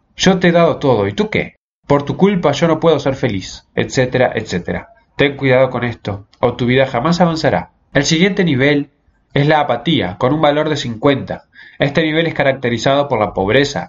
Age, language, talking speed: 20-39, Spanish, 195 wpm